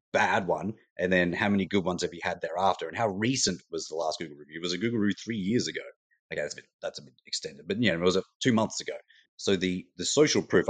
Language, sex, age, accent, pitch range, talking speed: English, male, 30-49, Australian, 90-105 Hz, 275 wpm